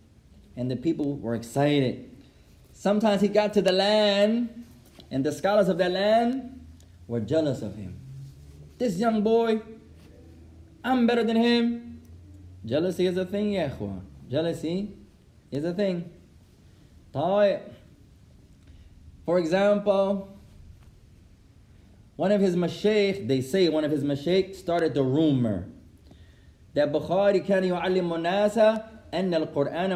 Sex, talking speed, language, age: male, 120 wpm, English, 20-39